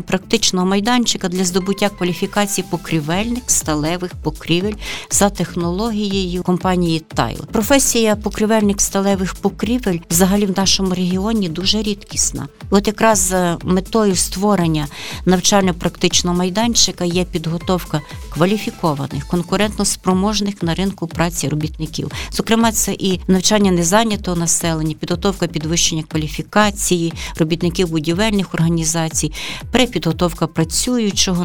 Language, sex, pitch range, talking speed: Ukrainian, female, 170-200 Hz, 100 wpm